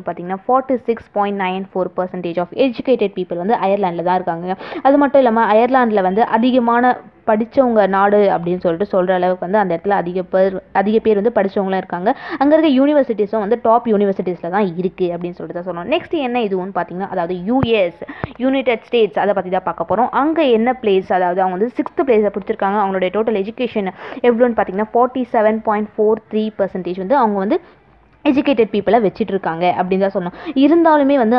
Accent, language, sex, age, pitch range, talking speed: native, Tamil, female, 20-39, 185-240 Hz, 145 wpm